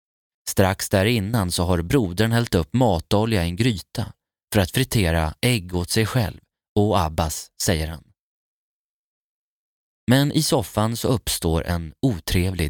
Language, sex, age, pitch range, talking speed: Swedish, male, 20-39, 90-120 Hz, 140 wpm